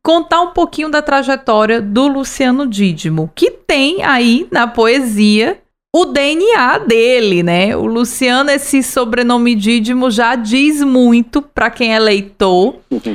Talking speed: 130 wpm